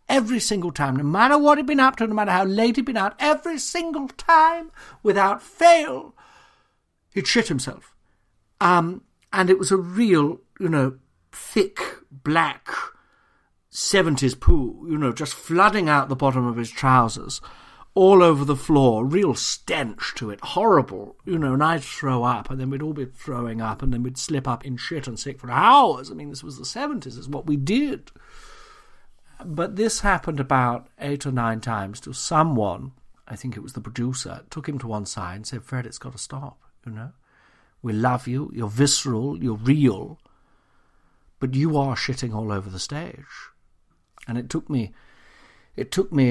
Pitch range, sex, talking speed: 125-175 Hz, male, 185 wpm